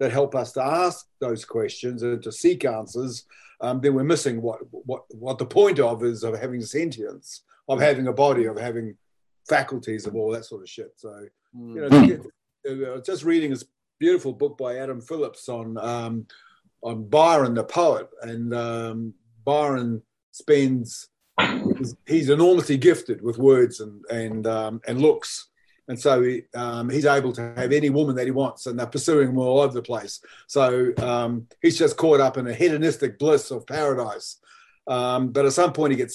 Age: 50-69